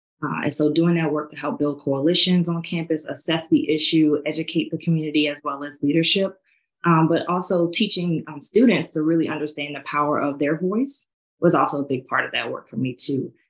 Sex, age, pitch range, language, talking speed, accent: female, 20-39, 140-165 Hz, English, 210 wpm, American